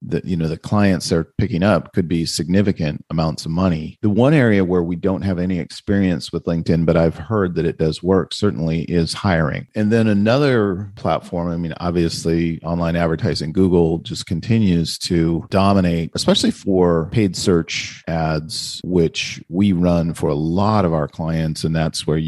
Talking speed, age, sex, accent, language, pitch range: 180 wpm, 40-59, male, American, English, 80-100 Hz